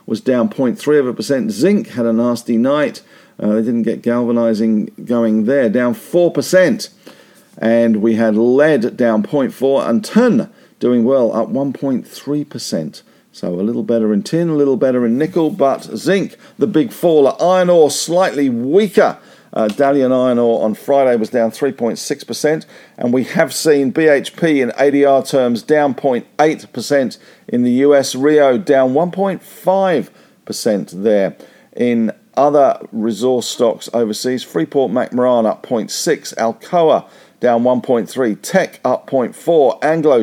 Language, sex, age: English, male, 50-69